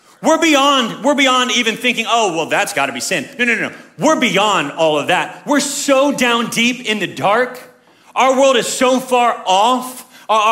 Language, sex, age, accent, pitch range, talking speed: English, male, 30-49, American, 245-315 Hz, 200 wpm